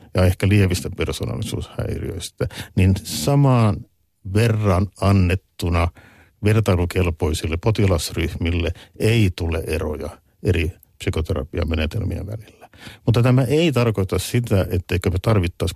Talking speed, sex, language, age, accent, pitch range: 90 wpm, male, Finnish, 50-69, native, 90-110 Hz